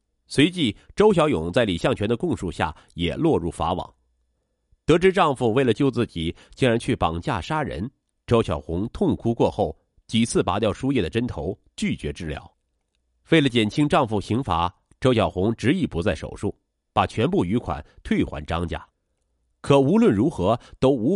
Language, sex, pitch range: Chinese, male, 80-130 Hz